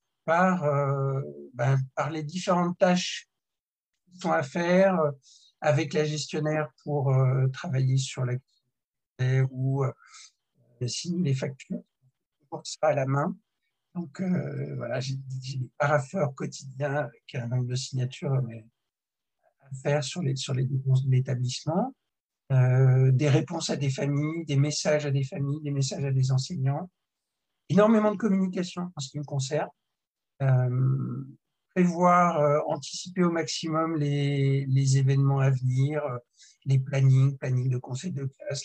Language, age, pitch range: French, 60-79, 130-170 Hz